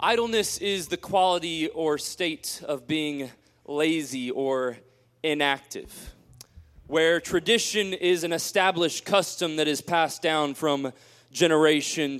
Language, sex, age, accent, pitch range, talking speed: English, male, 20-39, American, 140-180 Hz, 115 wpm